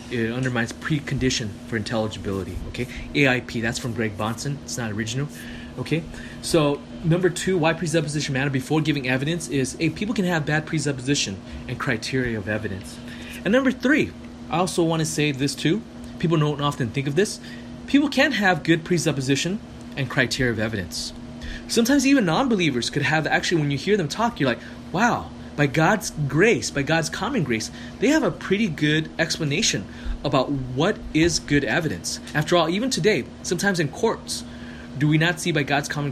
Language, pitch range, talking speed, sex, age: English, 120-165 Hz, 175 wpm, male, 20-39